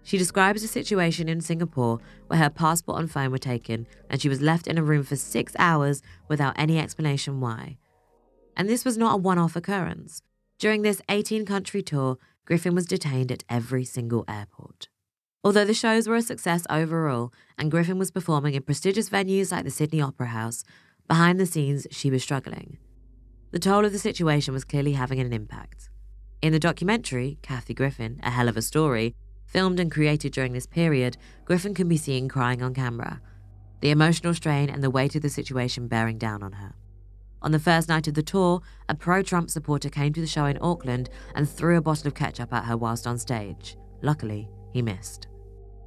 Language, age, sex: English, 20-39, female